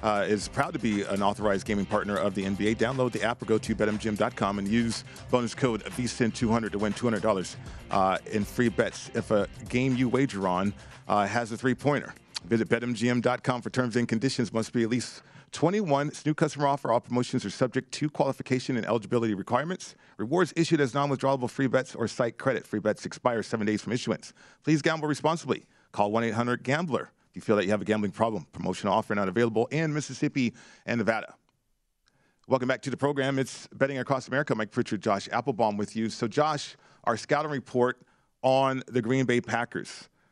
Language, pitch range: English, 110-135 Hz